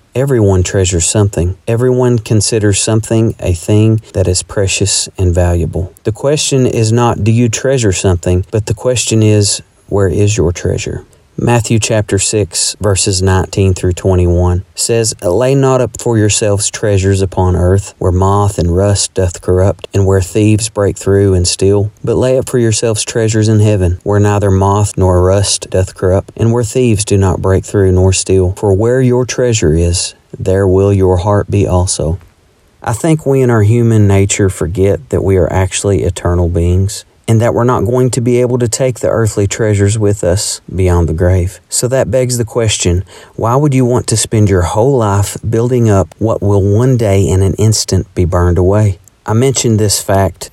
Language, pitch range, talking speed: English, 95-115 Hz, 185 wpm